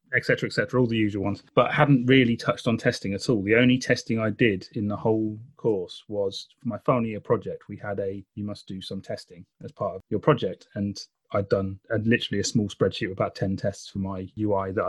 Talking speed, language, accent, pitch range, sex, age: 240 wpm, English, British, 100-125 Hz, male, 30-49